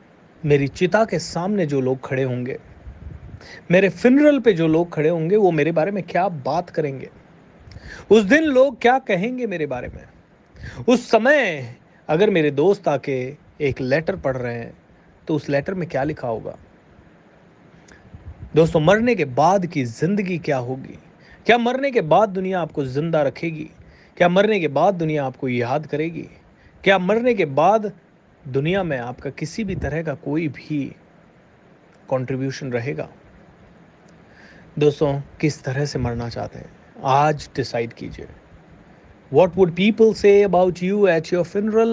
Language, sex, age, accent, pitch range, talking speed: Hindi, male, 30-49, native, 140-195 Hz, 135 wpm